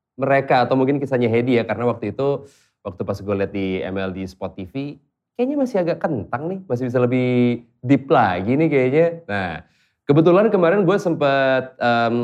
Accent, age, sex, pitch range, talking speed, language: native, 20-39, male, 100-130 Hz, 170 wpm, Indonesian